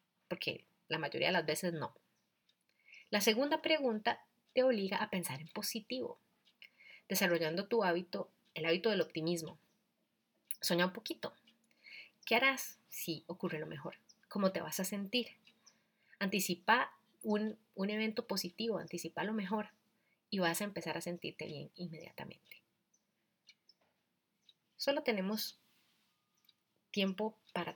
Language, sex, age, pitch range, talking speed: English, female, 30-49, 170-220 Hz, 125 wpm